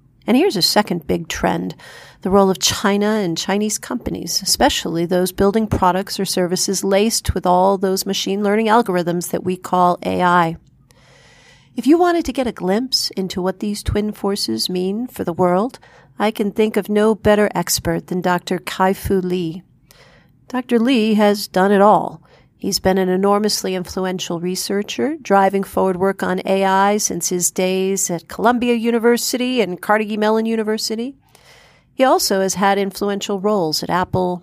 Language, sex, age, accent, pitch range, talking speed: English, female, 40-59, American, 180-215 Hz, 160 wpm